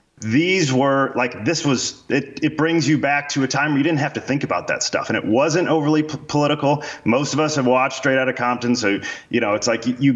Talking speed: 250 wpm